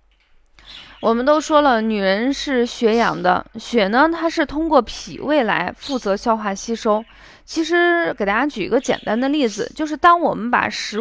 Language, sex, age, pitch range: Chinese, female, 20-39, 220-300 Hz